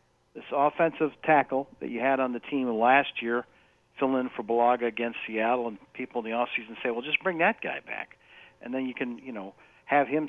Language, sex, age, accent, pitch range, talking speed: English, male, 50-69, American, 115-145 Hz, 215 wpm